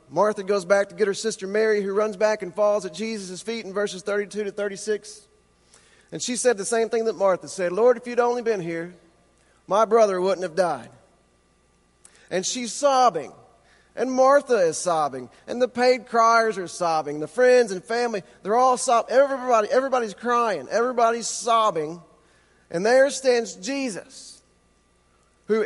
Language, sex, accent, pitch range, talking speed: English, male, American, 175-235 Hz, 165 wpm